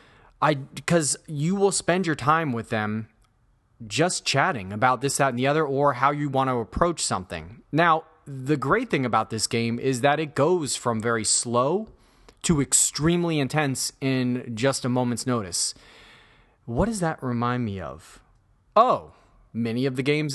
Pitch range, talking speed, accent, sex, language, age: 115-150 Hz, 170 wpm, American, male, English, 30-49